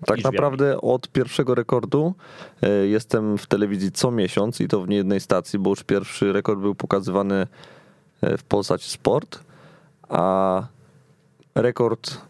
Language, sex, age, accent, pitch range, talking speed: Polish, male, 20-39, native, 100-125 Hz, 130 wpm